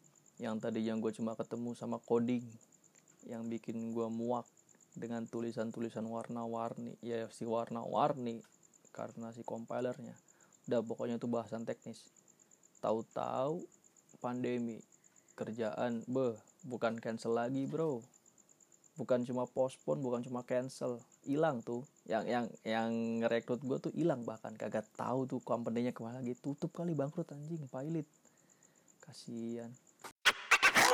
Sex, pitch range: male, 115-135 Hz